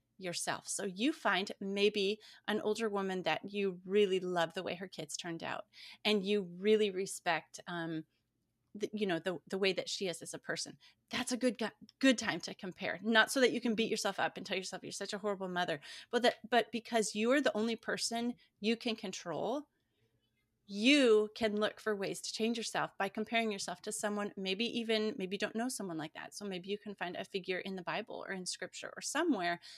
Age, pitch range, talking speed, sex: 30-49, 180-220 Hz, 210 wpm, female